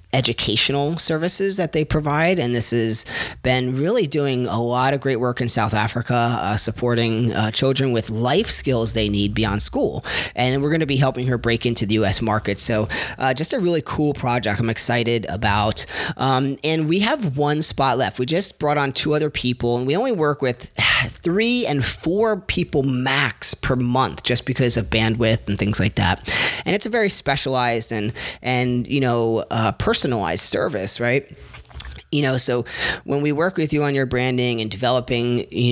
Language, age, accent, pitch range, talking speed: English, 30-49, American, 115-140 Hz, 190 wpm